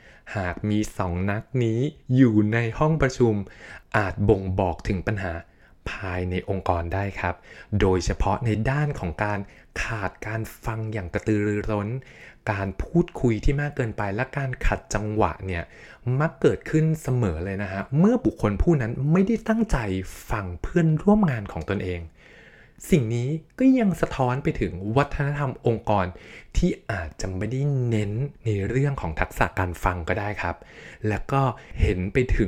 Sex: male